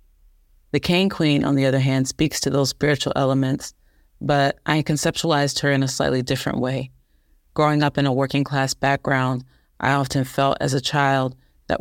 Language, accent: French, American